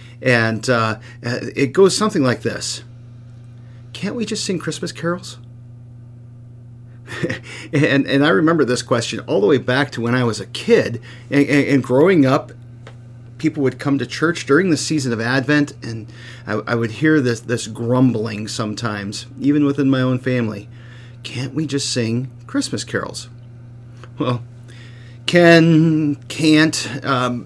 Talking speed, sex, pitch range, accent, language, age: 145 wpm, male, 120-145 Hz, American, English, 40-59